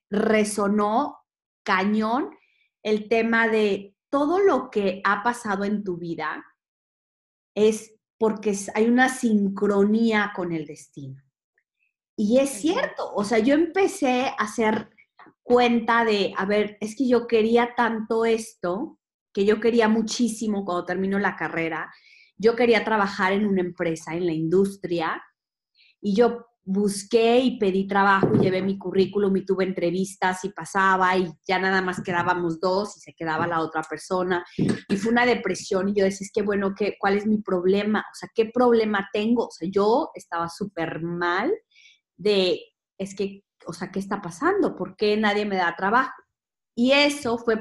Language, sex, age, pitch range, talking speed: Spanish, female, 30-49, 185-230 Hz, 160 wpm